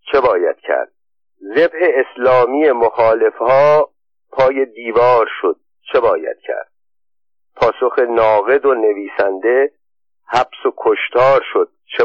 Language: Persian